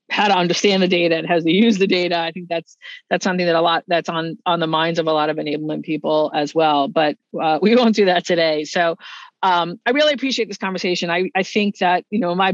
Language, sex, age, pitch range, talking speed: English, female, 40-59, 170-205 Hz, 255 wpm